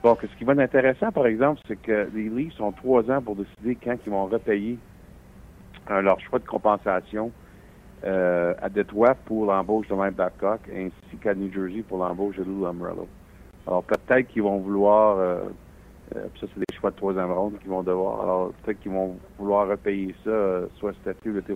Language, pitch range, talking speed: French, 95-110 Hz, 205 wpm